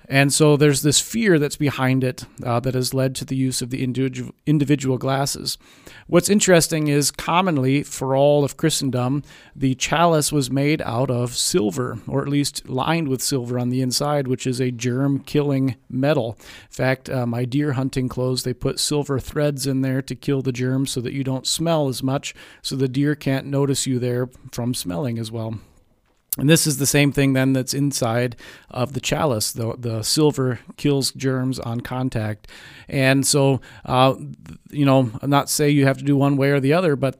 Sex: male